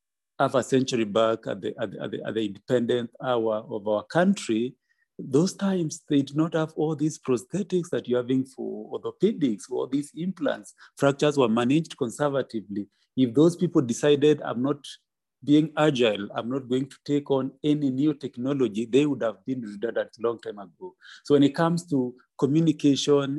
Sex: male